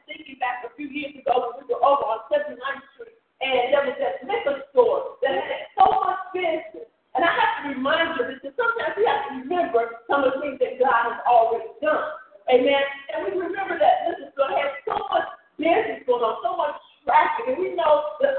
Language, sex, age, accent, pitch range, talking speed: English, female, 40-59, American, 275-375 Hz, 210 wpm